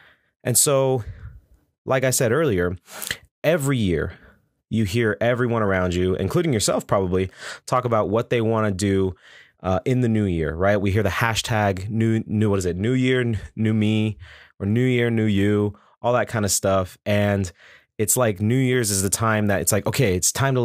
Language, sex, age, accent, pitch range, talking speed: English, male, 20-39, American, 95-120 Hz, 190 wpm